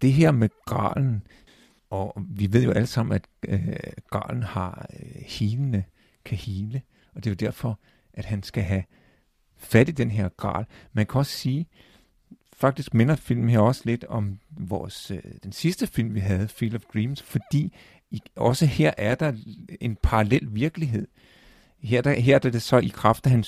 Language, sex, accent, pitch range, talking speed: Danish, male, native, 105-130 Hz, 180 wpm